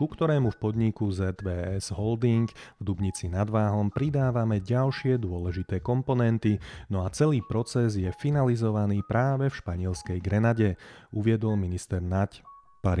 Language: Slovak